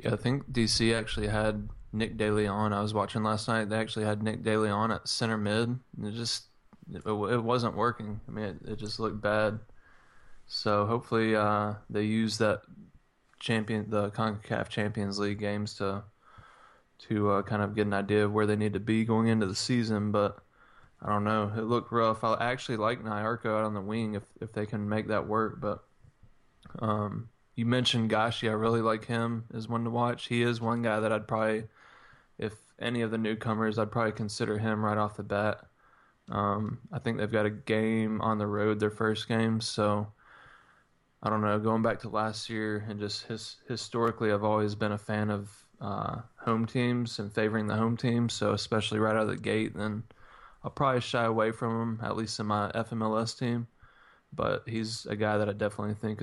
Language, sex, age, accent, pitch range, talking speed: English, male, 20-39, American, 105-115 Hz, 200 wpm